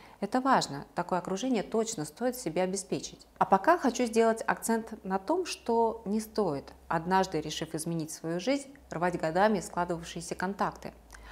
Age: 30-49